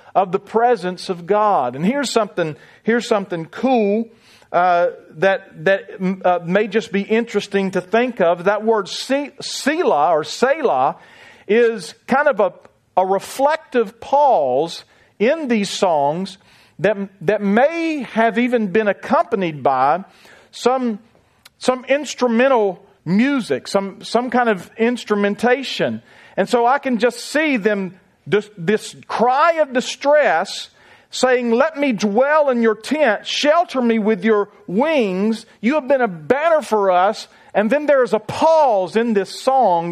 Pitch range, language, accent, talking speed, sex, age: 190-245 Hz, English, American, 140 wpm, male, 40-59